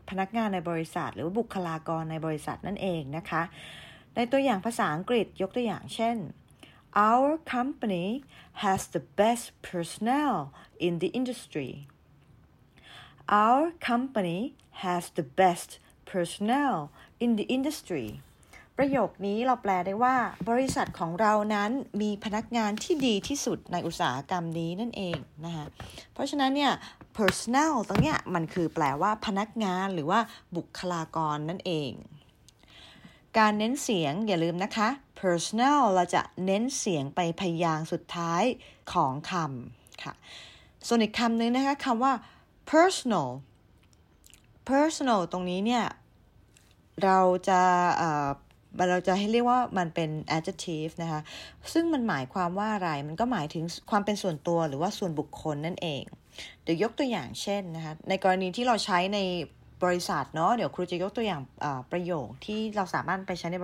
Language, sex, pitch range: English, female, 170-235 Hz